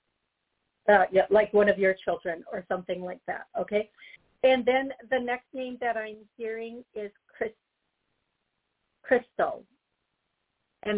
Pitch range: 205-240 Hz